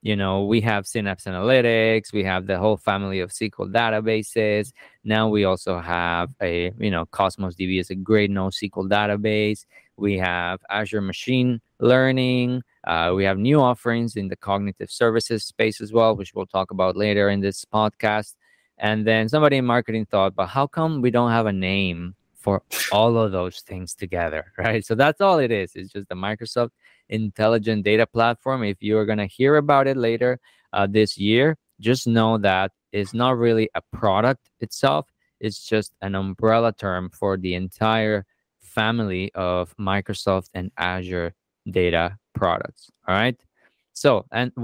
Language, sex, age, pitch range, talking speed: English, male, 20-39, 95-115 Hz, 170 wpm